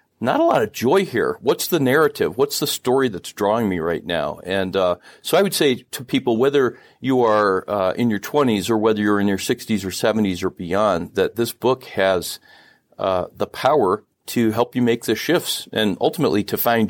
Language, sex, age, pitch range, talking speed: English, male, 40-59, 105-135 Hz, 210 wpm